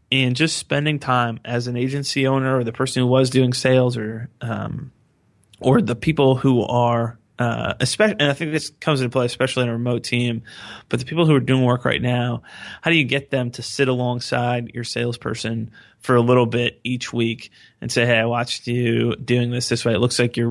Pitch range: 115-125 Hz